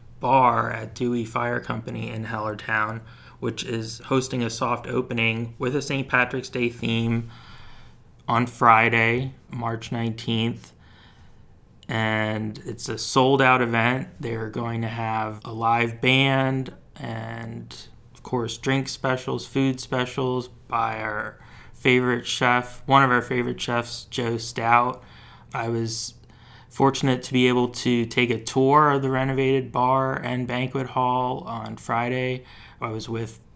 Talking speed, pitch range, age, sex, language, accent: 135 wpm, 115-125 Hz, 20-39, male, English, American